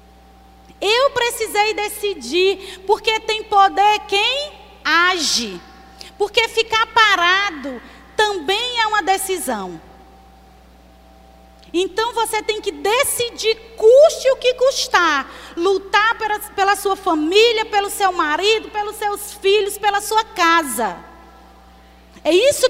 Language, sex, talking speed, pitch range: Portuguese, female, 105 wpm, 300-435 Hz